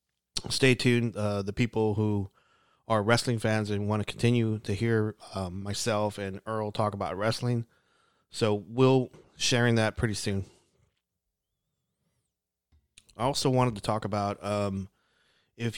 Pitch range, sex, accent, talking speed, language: 100-120 Hz, male, American, 135 wpm, English